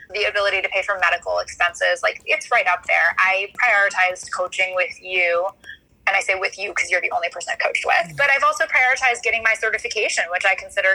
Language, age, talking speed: English, 20-39, 220 wpm